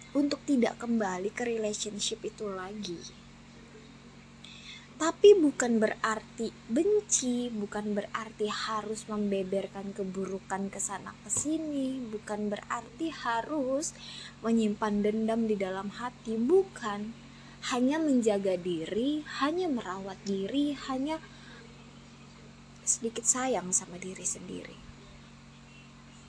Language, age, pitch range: Indonesian, 20-39, 190-240 Hz